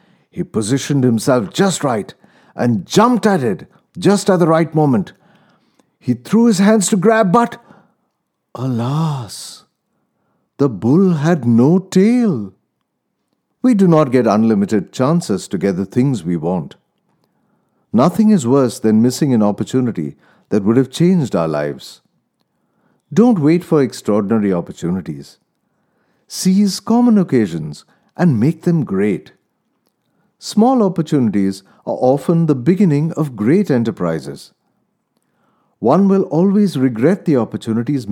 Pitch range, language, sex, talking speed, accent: 110-185 Hz, English, male, 125 wpm, Indian